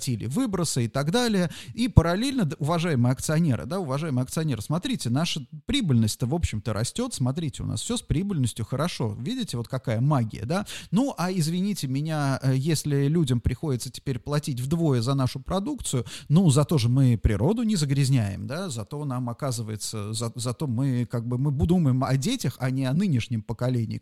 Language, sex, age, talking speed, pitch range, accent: Russian, male, 30-49, 170 wpm, 125-170 Hz, native